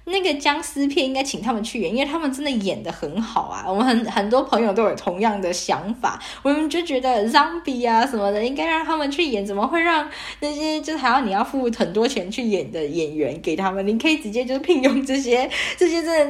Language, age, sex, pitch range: Chinese, 10-29, female, 195-265 Hz